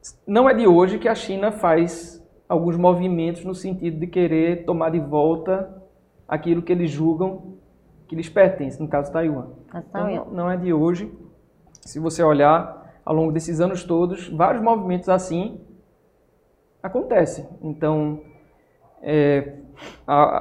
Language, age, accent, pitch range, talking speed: Portuguese, 20-39, Brazilian, 165-205 Hz, 140 wpm